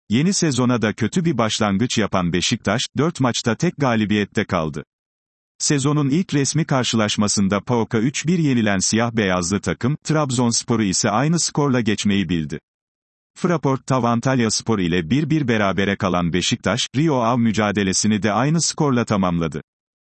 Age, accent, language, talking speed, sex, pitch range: 40-59, native, Turkish, 125 wpm, male, 100-130 Hz